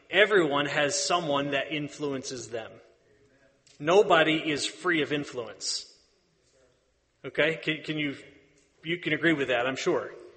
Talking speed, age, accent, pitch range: 125 wpm, 30-49, American, 145-185 Hz